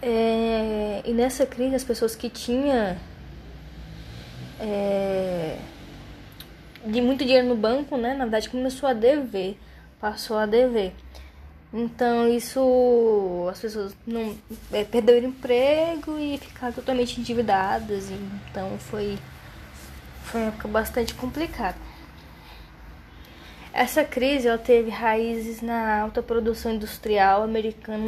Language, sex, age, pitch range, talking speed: Portuguese, female, 10-29, 200-255 Hz, 110 wpm